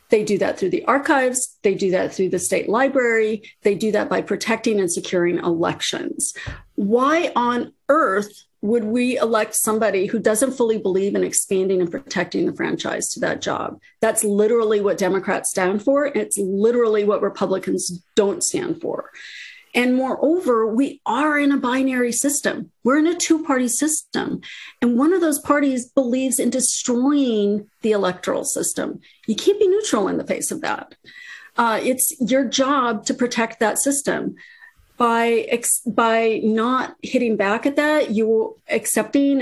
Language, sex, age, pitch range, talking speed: English, female, 40-59, 215-275 Hz, 160 wpm